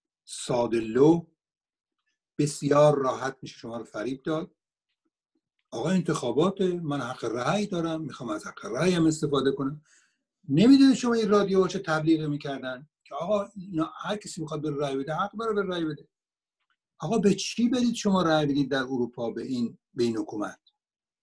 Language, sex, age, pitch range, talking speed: Persian, male, 60-79, 130-190 Hz, 150 wpm